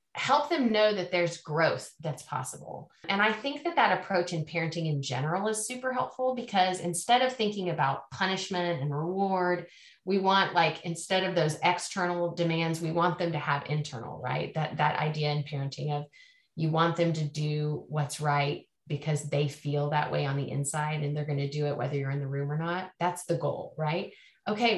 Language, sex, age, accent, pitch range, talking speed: English, female, 30-49, American, 150-190 Hz, 200 wpm